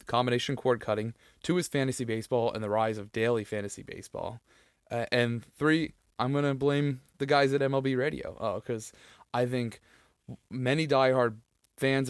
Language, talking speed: English, 160 wpm